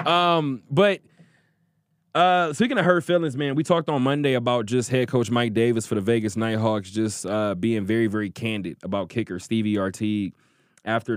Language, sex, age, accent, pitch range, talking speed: English, male, 20-39, American, 105-130 Hz, 175 wpm